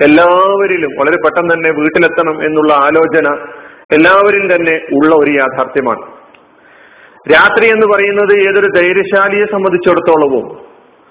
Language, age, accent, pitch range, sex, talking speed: Malayalam, 40-59, native, 160-200 Hz, male, 95 wpm